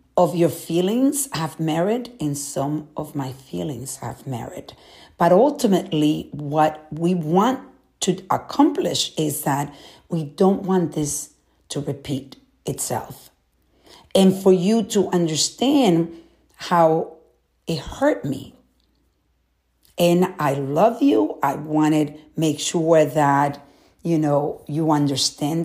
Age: 50-69